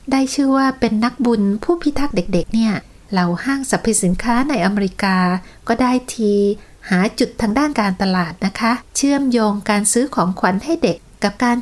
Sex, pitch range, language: female, 185-250 Hz, Thai